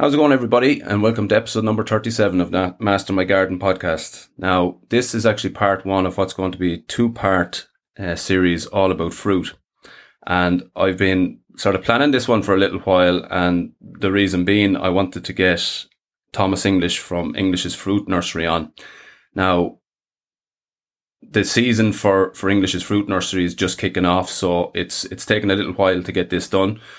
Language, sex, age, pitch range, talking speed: English, male, 30-49, 90-100 Hz, 185 wpm